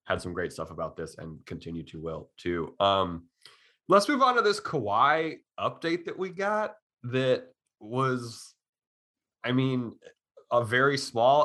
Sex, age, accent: male, 30-49, American